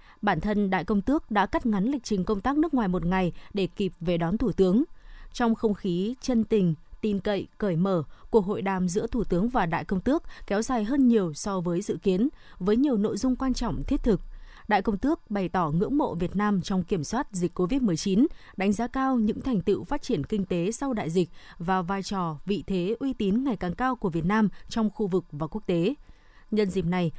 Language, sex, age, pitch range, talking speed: Vietnamese, female, 20-39, 185-235 Hz, 235 wpm